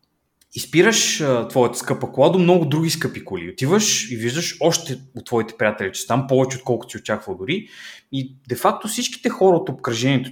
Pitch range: 115-160 Hz